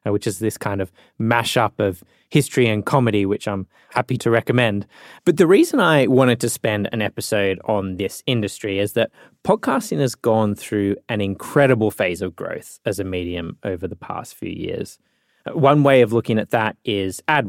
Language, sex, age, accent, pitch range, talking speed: English, male, 20-39, Australian, 100-125 Hz, 185 wpm